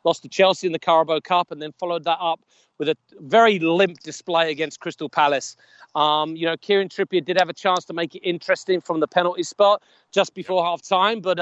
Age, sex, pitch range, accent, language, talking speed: 40-59, male, 170-210 Hz, British, English, 215 wpm